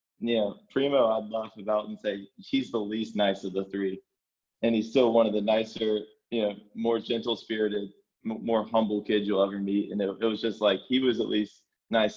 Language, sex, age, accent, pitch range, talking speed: English, male, 20-39, American, 100-110 Hz, 225 wpm